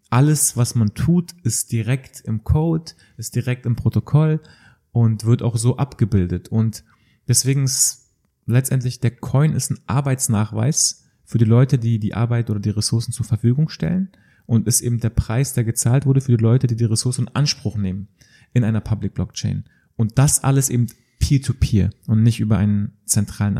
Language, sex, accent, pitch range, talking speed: German, male, German, 110-140 Hz, 175 wpm